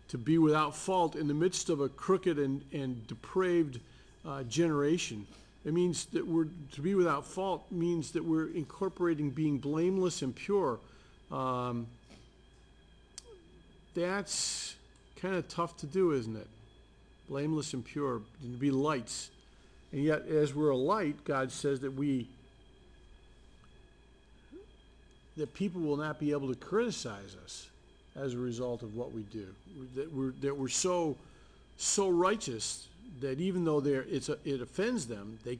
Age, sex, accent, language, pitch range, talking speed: 50-69, male, American, English, 125-170 Hz, 150 wpm